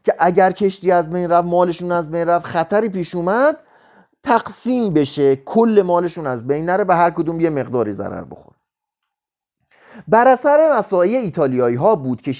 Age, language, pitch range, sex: 30-49, Persian, 150-215 Hz, male